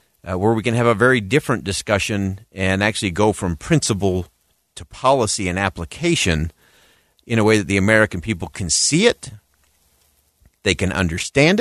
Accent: American